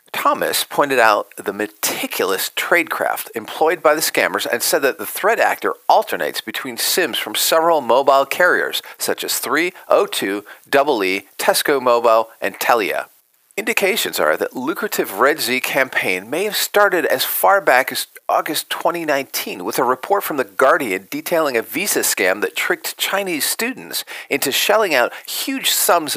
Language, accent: English, American